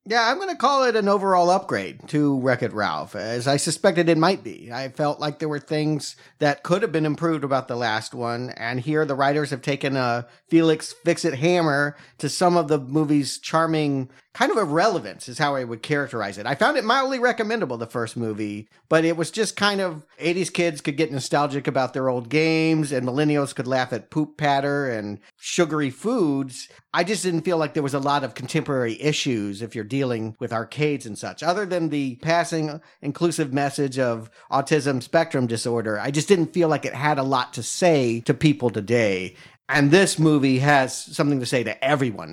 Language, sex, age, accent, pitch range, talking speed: English, male, 50-69, American, 125-165 Hz, 205 wpm